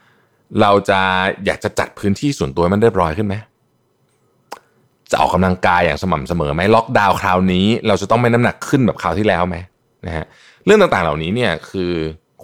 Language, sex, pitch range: Thai, male, 90-120 Hz